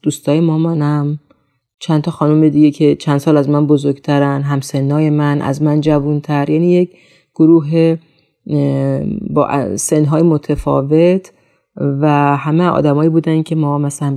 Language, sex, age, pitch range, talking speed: Persian, female, 30-49, 145-165 Hz, 125 wpm